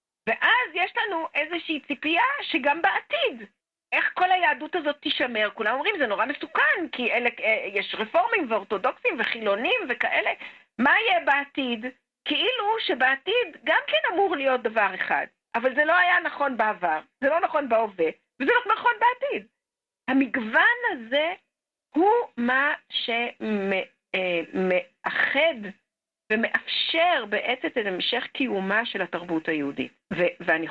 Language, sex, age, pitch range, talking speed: Hebrew, female, 50-69, 205-335 Hz, 125 wpm